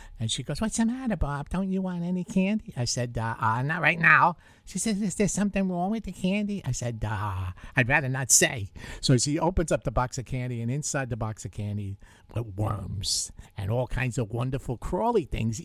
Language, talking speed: English, 215 wpm